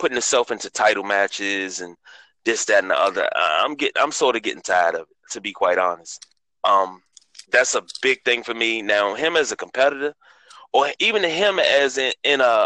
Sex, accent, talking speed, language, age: male, American, 205 wpm, English, 20-39